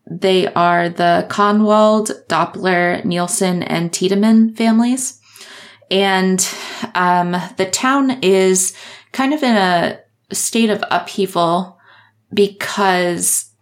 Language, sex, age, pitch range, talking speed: English, female, 20-39, 175-205 Hz, 95 wpm